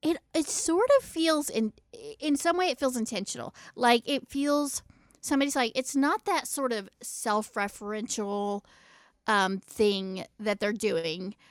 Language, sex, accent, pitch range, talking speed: English, female, American, 200-265 Hz, 145 wpm